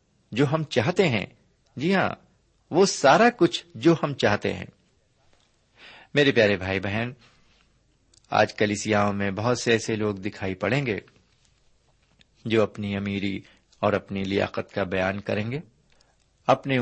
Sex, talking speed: male, 135 wpm